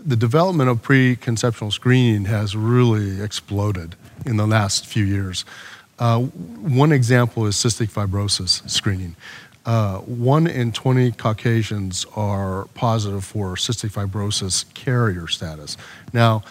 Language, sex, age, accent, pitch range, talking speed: English, male, 40-59, American, 100-125 Hz, 120 wpm